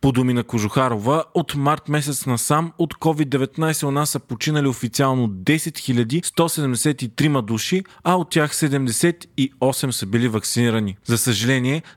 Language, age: Bulgarian, 30-49